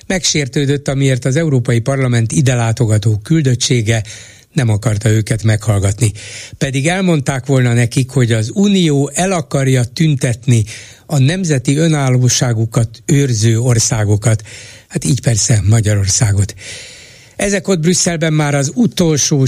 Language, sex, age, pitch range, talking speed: Hungarian, male, 60-79, 110-140 Hz, 115 wpm